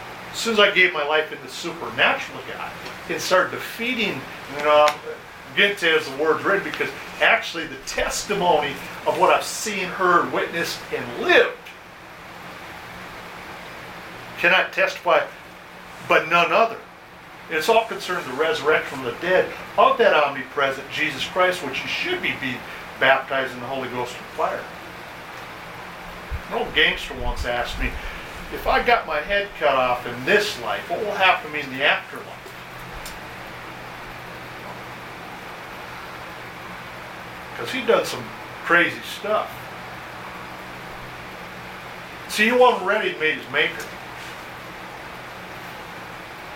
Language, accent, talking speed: English, American, 130 wpm